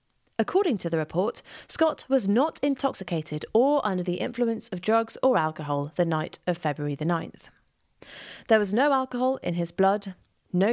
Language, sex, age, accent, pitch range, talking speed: English, female, 30-49, British, 165-235 Hz, 170 wpm